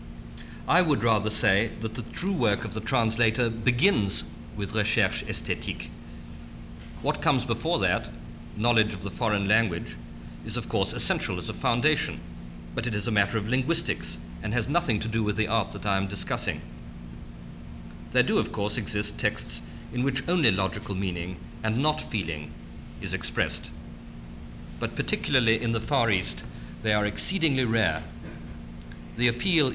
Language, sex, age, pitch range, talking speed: English, male, 50-69, 80-110 Hz, 155 wpm